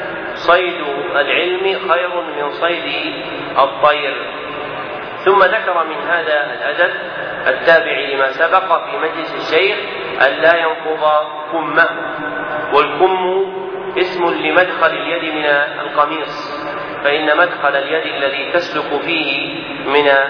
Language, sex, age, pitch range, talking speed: Arabic, male, 40-59, 145-170 Hz, 100 wpm